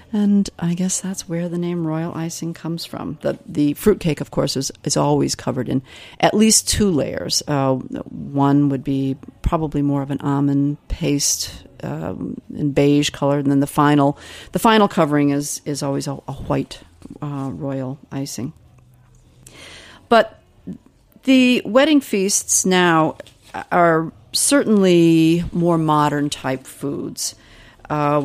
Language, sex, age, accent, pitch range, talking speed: English, female, 40-59, American, 140-170 Hz, 140 wpm